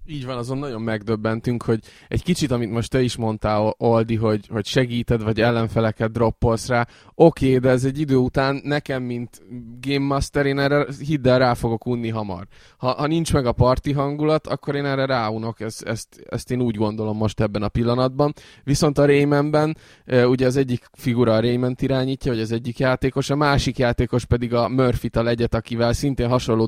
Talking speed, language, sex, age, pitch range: 185 wpm, Hungarian, male, 20-39, 115-140 Hz